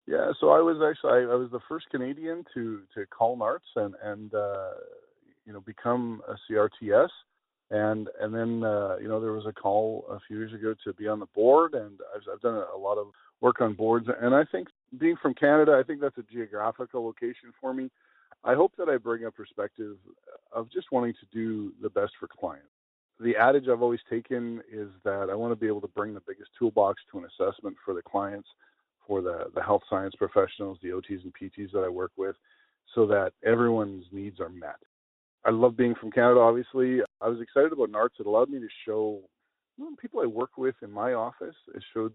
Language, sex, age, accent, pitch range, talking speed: English, male, 40-59, American, 105-130 Hz, 215 wpm